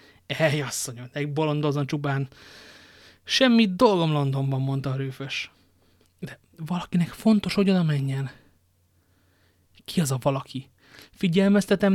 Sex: male